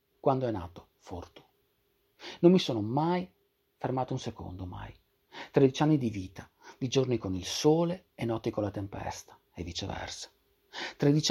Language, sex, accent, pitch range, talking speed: Italian, male, native, 95-130 Hz, 155 wpm